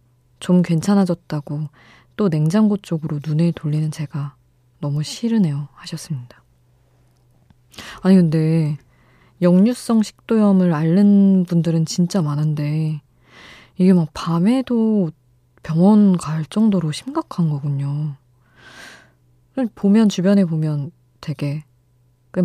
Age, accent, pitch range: 20-39, native, 125-185 Hz